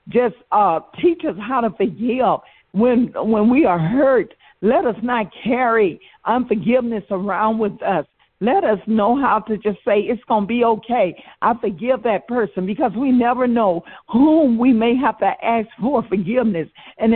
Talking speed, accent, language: 170 wpm, American, English